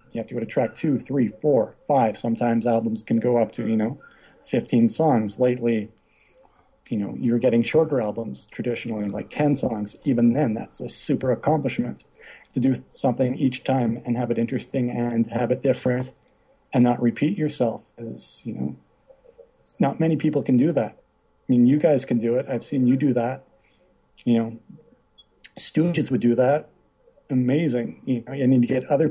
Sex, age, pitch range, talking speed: male, 40-59, 115-130 Hz, 180 wpm